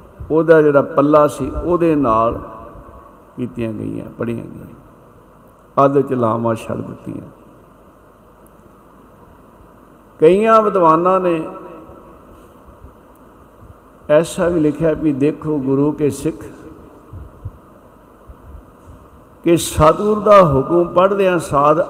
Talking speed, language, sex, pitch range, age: 90 wpm, Punjabi, male, 120-155 Hz, 60-79